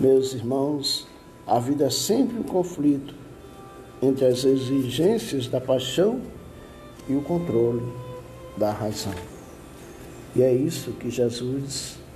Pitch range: 120-140 Hz